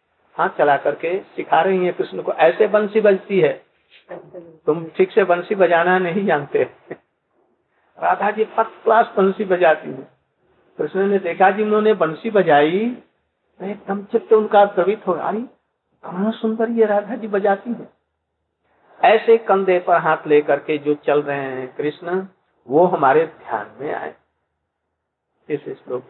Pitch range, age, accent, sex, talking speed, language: 155-215 Hz, 60-79, native, male, 145 wpm, Hindi